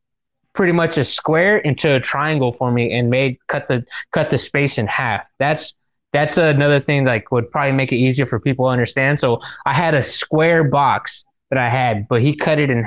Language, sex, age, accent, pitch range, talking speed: English, male, 20-39, American, 125-150 Hz, 220 wpm